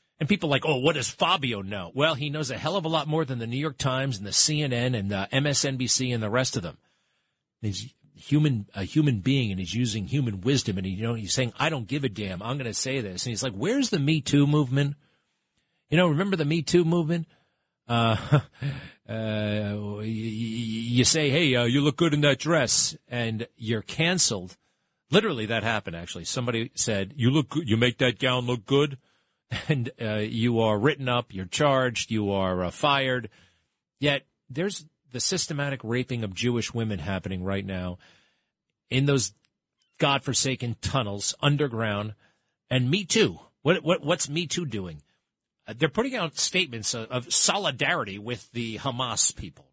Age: 40-59